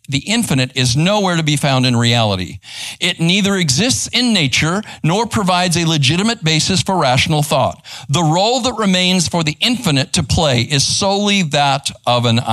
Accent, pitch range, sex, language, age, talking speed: American, 115-155 Hz, male, English, 50-69, 175 wpm